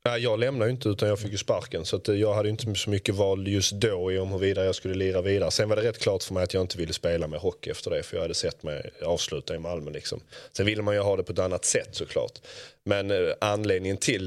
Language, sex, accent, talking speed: English, male, Swedish, 280 wpm